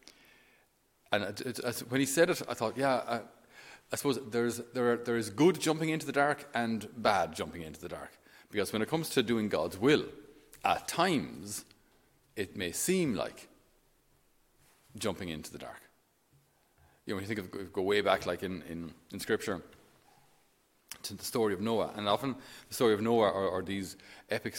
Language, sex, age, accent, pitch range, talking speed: English, male, 40-59, Irish, 90-135 Hz, 185 wpm